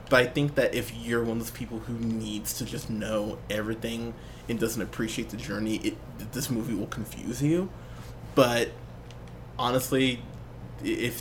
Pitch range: 110-145 Hz